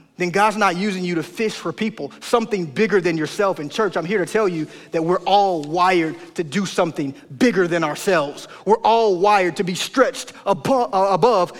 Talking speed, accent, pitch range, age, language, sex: 200 wpm, American, 155-205 Hz, 30-49, English, male